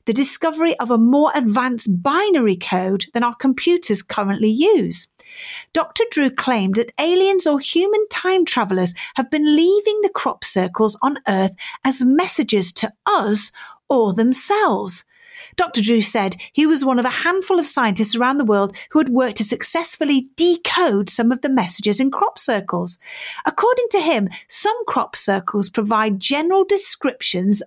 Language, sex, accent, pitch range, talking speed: English, female, British, 210-315 Hz, 155 wpm